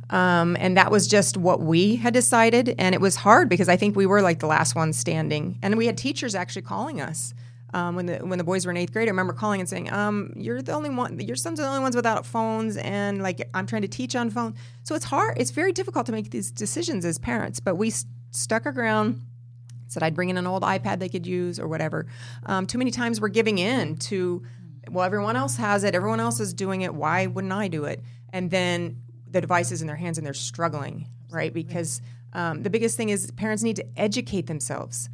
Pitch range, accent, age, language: 120-200 Hz, American, 30-49, English